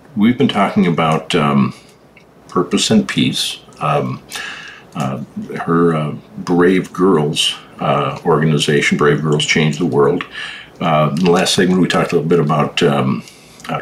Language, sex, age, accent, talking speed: English, male, 60-79, American, 150 wpm